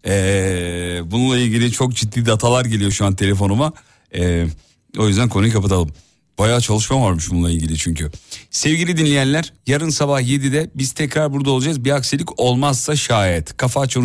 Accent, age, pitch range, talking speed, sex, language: native, 40-59, 90-125 Hz, 155 wpm, male, Turkish